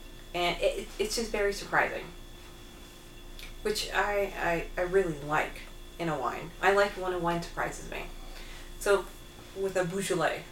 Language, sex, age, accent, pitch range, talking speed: English, female, 30-49, American, 160-195 Hz, 150 wpm